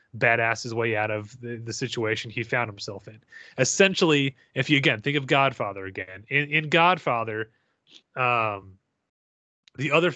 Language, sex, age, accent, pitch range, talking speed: English, male, 30-49, American, 115-140 Hz, 155 wpm